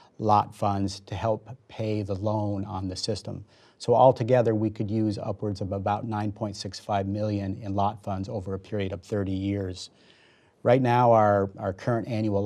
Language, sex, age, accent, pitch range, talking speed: English, male, 40-59, American, 100-115 Hz, 170 wpm